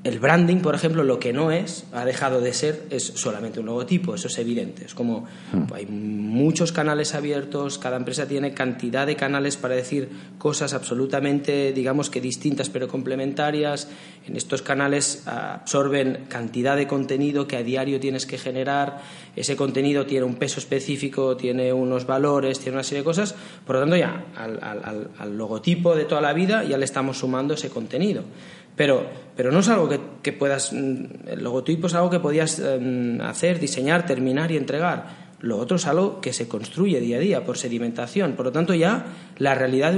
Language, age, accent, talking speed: Spanish, 30-49, Spanish, 185 wpm